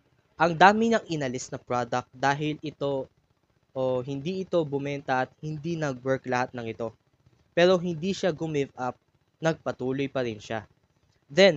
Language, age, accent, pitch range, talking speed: English, 20-39, Filipino, 125-170 Hz, 150 wpm